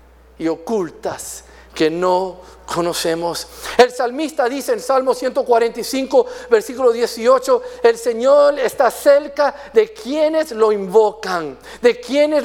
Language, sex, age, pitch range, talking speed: English, male, 50-69, 210-280 Hz, 110 wpm